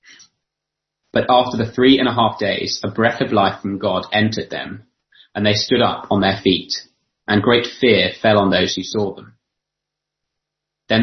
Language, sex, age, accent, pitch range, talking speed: English, male, 30-49, British, 100-115 Hz, 180 wpm